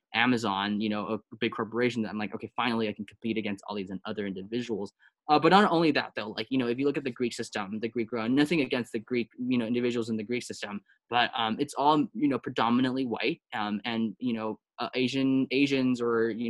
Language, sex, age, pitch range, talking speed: English, male, 10-29, 110-125 Hz, 240 wpm